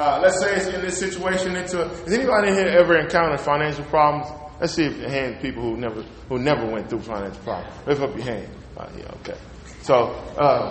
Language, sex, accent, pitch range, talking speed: English, male, American, 145-205 Hz, 225 wpm